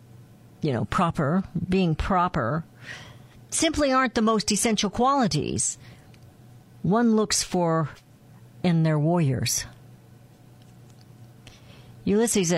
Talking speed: 85 wpm